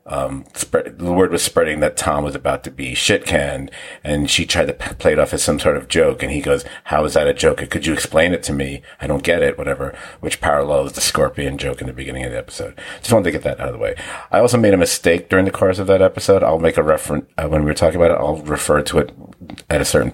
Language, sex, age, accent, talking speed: English, male, 50-69, American, 280 wpm